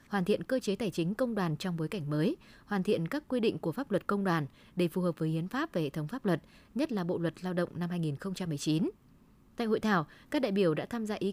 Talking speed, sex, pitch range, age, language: 270 wpm, female, 170-215 Hz, 20-39, Vietnamese